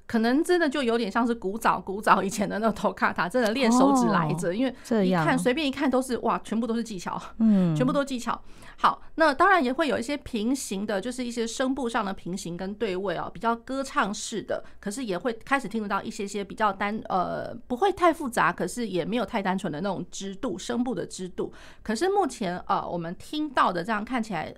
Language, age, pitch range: Chinese, 30-49, 195-245 Hz